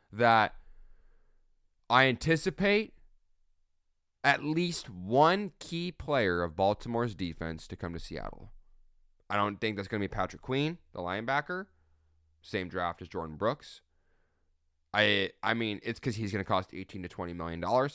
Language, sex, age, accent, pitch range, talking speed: English, male, 20-39, American, 85-115 Hz, 145 wpm